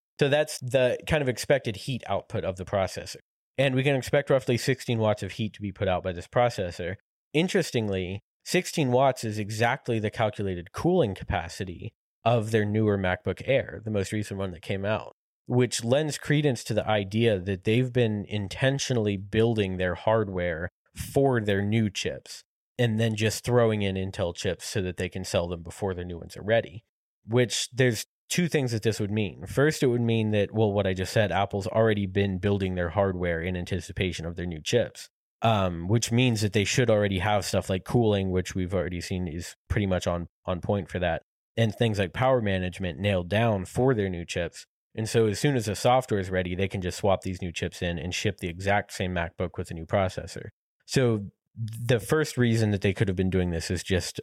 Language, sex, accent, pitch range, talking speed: English, male, American, 95-120 Hz, 210 wpm